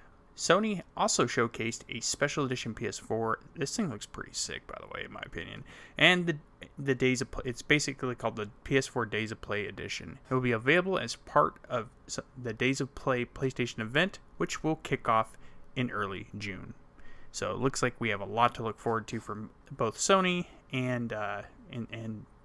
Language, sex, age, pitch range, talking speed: English, male, 20-39, 110-140 Hz, 190 wpm